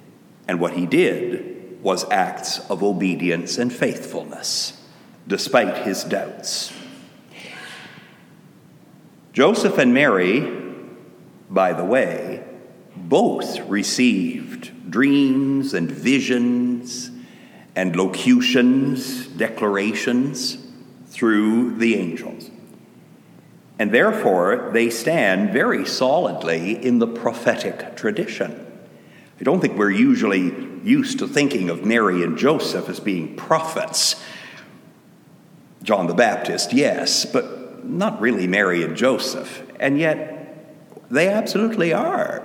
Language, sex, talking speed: English, male, 100 wpm